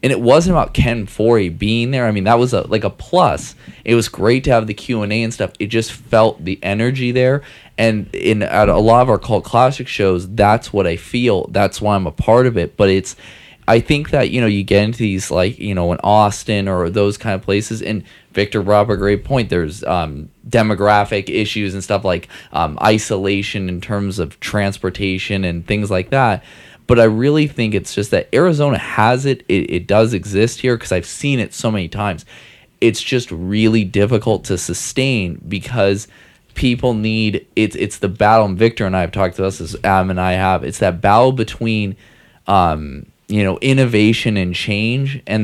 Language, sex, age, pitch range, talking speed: English, male, 20-39, 95-115 Hz, 205 wpm